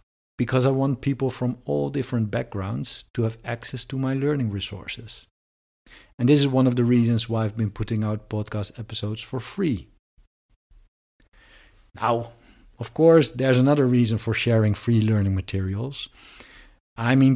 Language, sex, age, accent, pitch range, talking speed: English, male, 50-69, Dutch, 105-130 Hz, 150 wpm